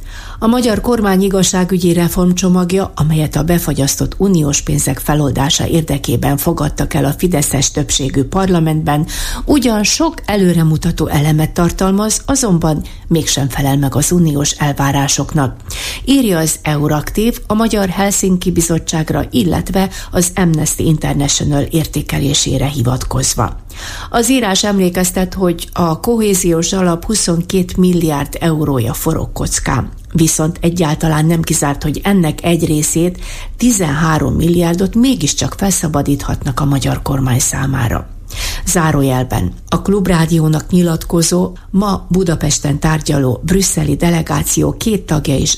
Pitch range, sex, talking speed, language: 145-185 Hz, female, 110 wpm, Hungarian